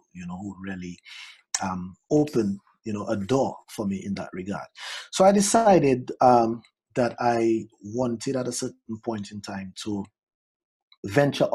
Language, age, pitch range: English, 30-49, 105-130 Hz